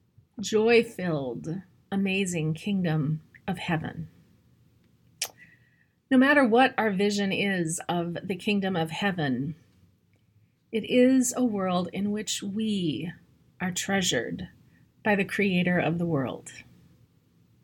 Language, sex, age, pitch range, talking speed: English, female, 30-49, 175-220 Hz, 105 wpm